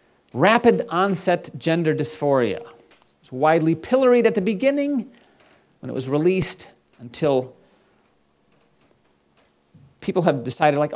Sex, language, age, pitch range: male, English, 40-59, 120-175 Hz